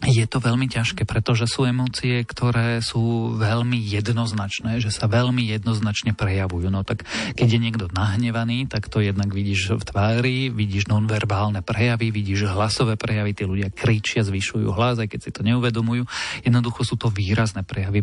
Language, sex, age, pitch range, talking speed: Slovak, male, 40-59, 105-120 Hz, 165 wpm